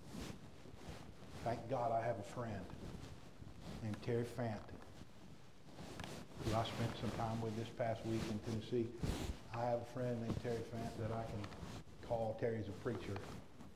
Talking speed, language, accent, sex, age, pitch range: 150 wpm, English, American, male, 50-69, 105-135 Hz